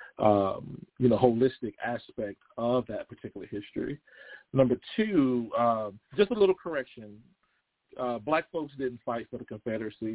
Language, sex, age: English, male, 40-59